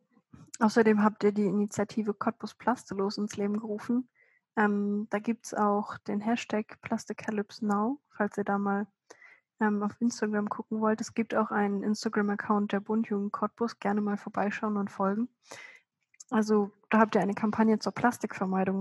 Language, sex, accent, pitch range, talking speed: German, female, German, 200-220 Hz, 155 wpm